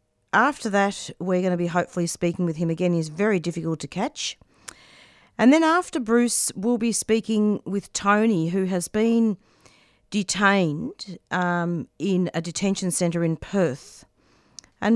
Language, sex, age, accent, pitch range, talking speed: English, female, 40-59, Australian, 165-200 Hz, 150 wpm